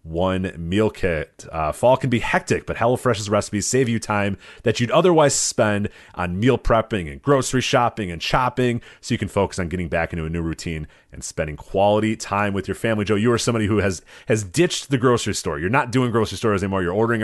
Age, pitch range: 30-49, 90-120 Hz